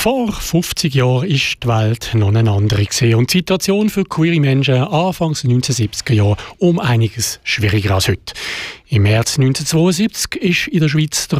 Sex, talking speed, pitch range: male, 170 wpm, 120-160 Hz